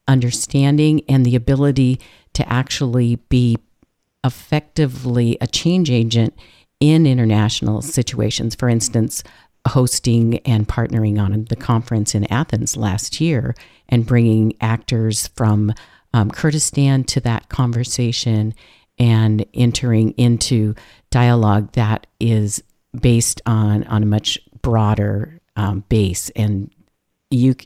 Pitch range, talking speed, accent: 105-130 Hz, 110 wpm, American